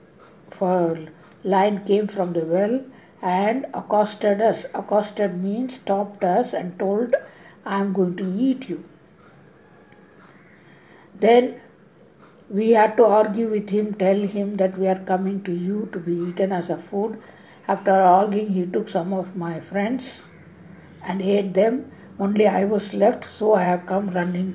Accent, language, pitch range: Indian, English, 180-210 Hz